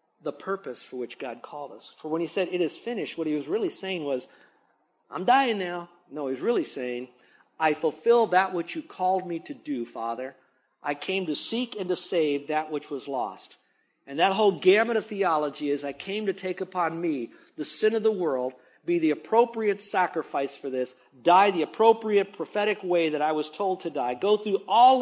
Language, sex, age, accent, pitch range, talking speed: English, male, 50-69, American, 135-195 Hz, 205 wpm